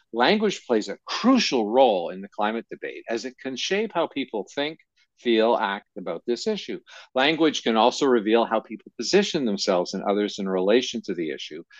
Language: English